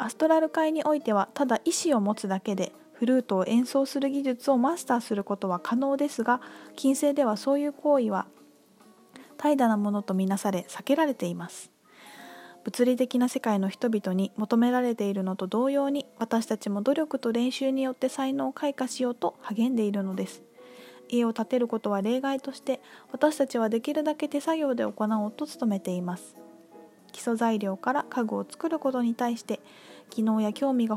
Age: 20-39